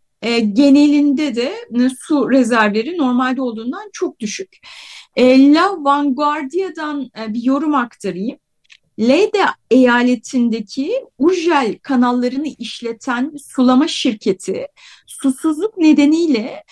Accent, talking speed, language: native, 80 wpm, Turkish